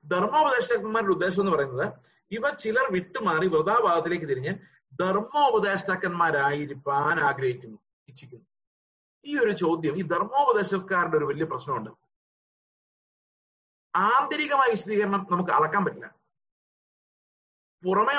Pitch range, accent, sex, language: 145-210 Hz, native, male, Malayalam